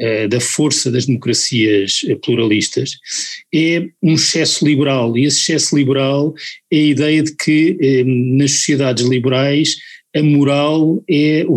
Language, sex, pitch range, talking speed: Portuguese, male, 130-155 Hz, 130 wpm